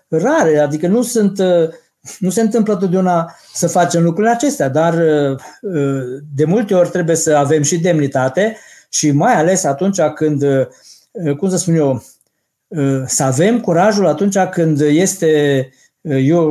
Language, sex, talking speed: Romanian, male, 140 wpm